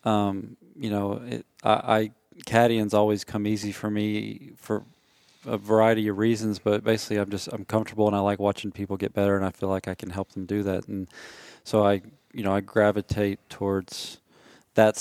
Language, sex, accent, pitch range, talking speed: English, male, American, 100-115 Hz, 195 wpm